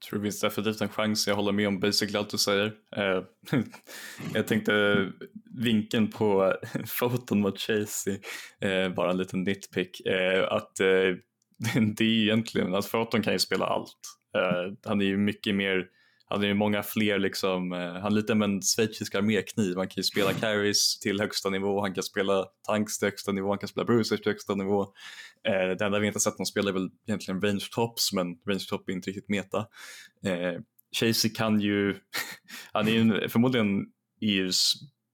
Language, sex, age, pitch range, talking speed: Swedish, male, 20-39, 95-110 Hz, 175 wpm